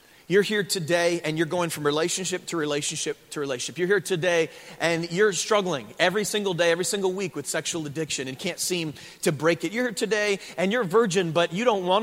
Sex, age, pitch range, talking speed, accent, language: male, 30-49, 175-235 Hz, 215 wpm, American, English